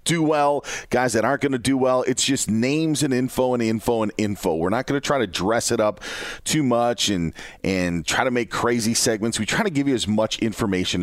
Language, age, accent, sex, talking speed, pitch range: English, 40-59, American, male, 240 wpm, 105-140 Hz